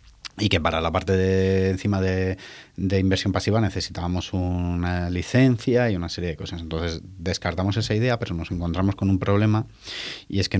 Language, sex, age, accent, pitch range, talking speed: English, male, 30-49, Spanish, 90-110 Hz, 175 wpm